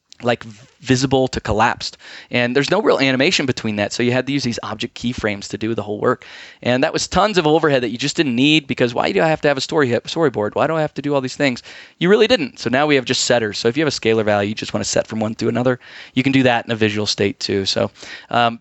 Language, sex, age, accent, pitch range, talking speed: English, male, 20-39, American, 120-150 Hz, 290 wpm